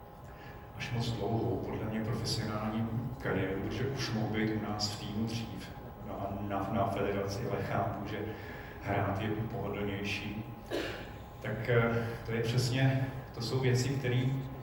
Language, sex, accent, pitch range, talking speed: Czech, male, native, 105-125 Hz, 145 wpm